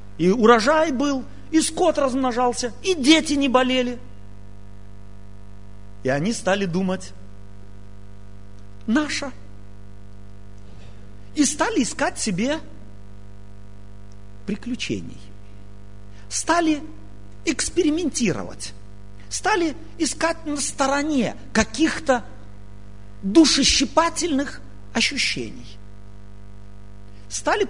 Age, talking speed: 50-69, 65 wpm